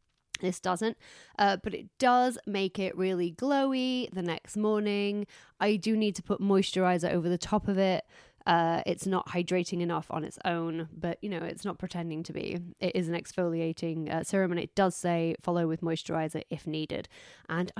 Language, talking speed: English, 190 wpm